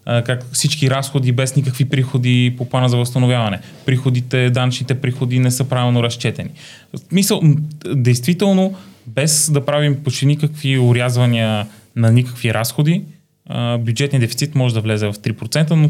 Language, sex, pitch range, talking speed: Bulgarian, male, 115-145 Hz, 130 wpm